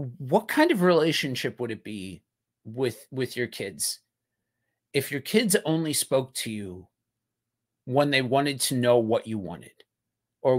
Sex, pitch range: male, 115-140 Hz